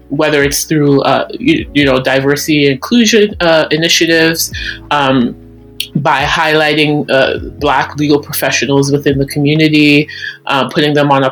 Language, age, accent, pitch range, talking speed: English, 30-49, American, 140-165 Hz, 145 wpm